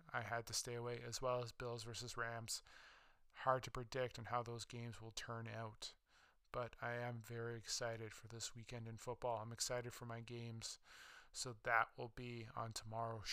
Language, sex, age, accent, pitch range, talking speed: English, male, 20-39, American, 115-125 Hz, 190 wpm